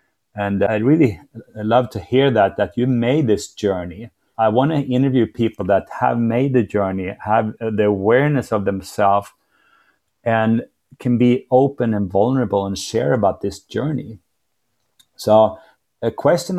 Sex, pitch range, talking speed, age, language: male, 105-130 Hz, 150 wpm, 30-49, English